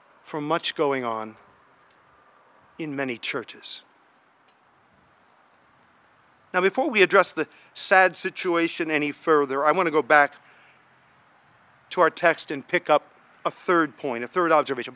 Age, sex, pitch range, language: 50-69, male, 150-195 Hz, English